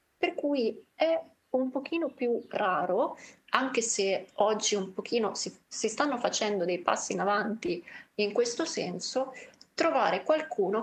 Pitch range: 195-260 Hz